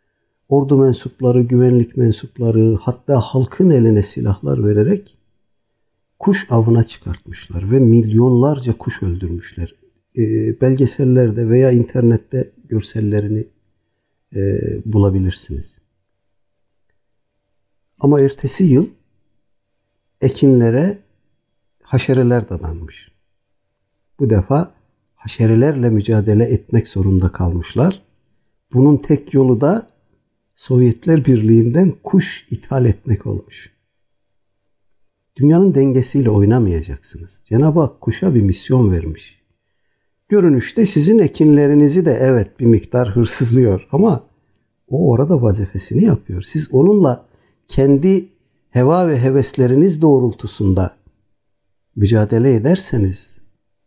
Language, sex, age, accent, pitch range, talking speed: Turkish, male, 60-79, native, 100-135 Hz, 85 wpm